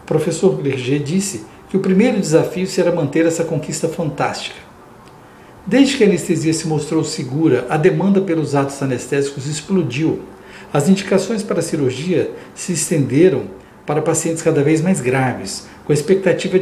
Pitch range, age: 130-175 Hz, 60-79